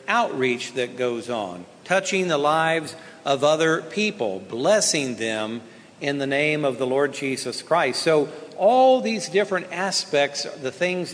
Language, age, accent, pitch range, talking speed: English, 50-69, American, 140-175 Hz, 145 wpm